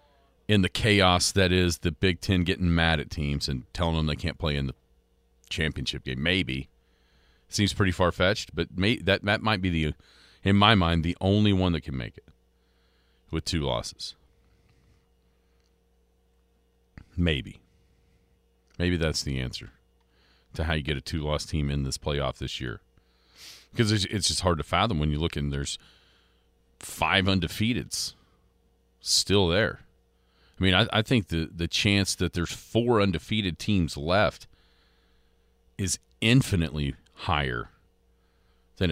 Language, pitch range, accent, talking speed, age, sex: English, 65-95 Hz, American, 150 wpm, 40-59, male